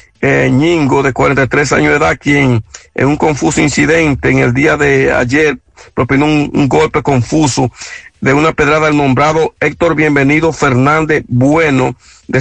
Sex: male